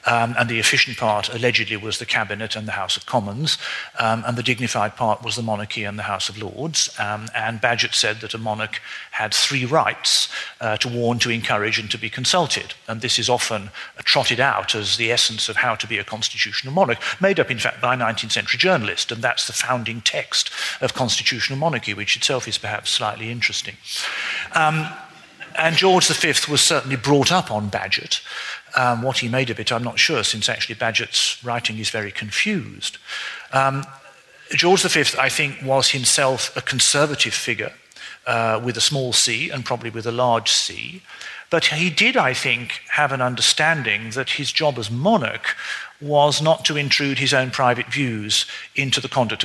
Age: 50-69